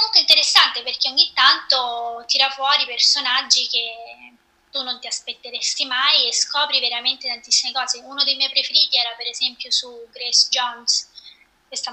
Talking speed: 145 wpm